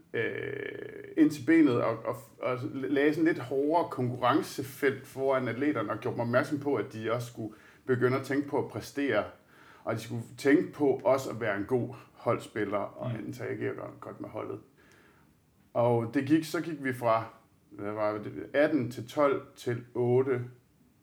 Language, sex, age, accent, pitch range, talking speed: Danish, male, 50-69, native, 110-135 Hz, 170 wpm